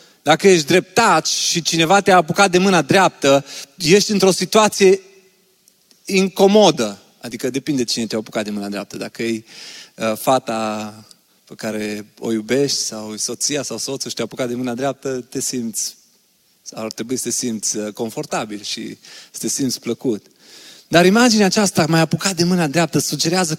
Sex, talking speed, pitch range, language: male, 155 wpm, 140-195 Hz, Romanian